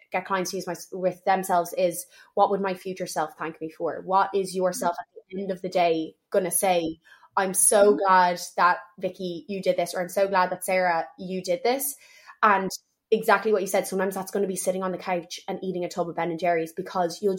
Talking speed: 240 wpm